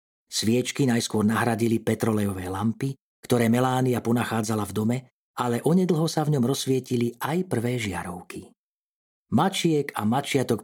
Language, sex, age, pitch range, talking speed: Slovak, male, 40-59, 110-135 Hz, 125 wpm